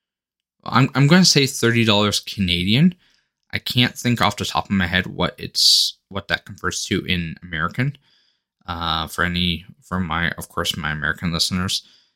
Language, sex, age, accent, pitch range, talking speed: English, male, 10-29, American, 85-110 Hz, 175 wpm